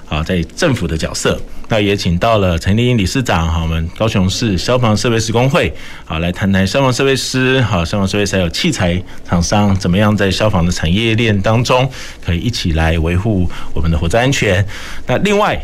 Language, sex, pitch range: Chinese, male, 90-115 Hz